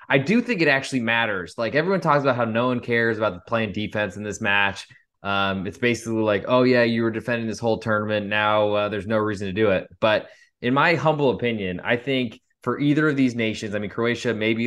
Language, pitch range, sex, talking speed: English, 100-120 Hz, male, 235 wpm